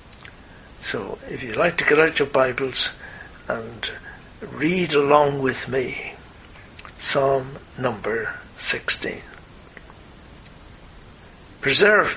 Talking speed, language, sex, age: 90 wpm, English, male, 60-79